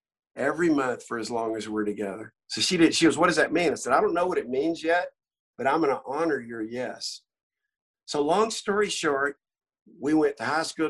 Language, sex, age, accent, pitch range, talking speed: English, male, 50-69, American, 125-180 Hz, 230 wpm